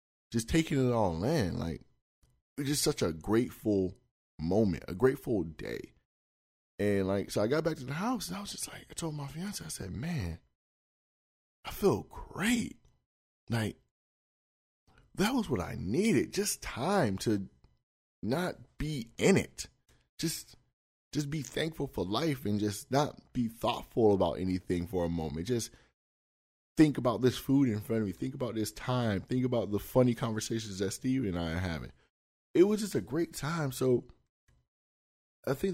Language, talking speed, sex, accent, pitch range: English, 170 wpm, male, American, 90-130 Hz